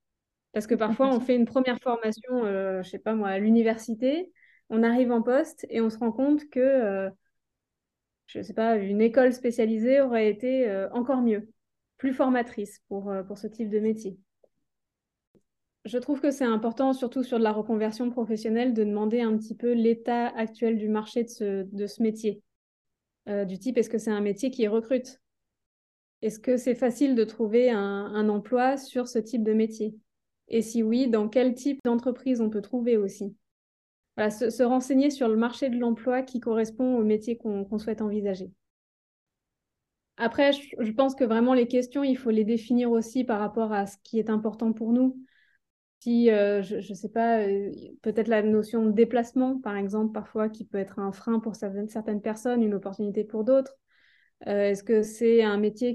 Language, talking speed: French, 190 wpm